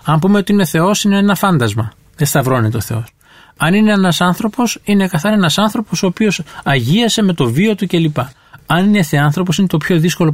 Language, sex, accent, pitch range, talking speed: English, male, Greek, 130-175 Hz, 210 wpm